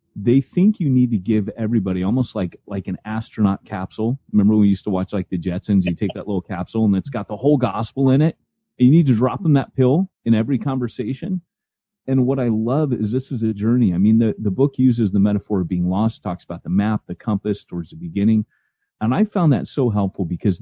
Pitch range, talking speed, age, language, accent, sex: 95-125 Hz, 240 wpm, 30-49, English, American, male